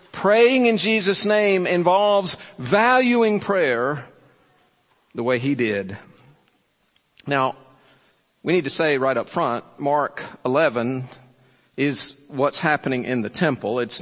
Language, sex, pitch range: English, male, 130-185 Hz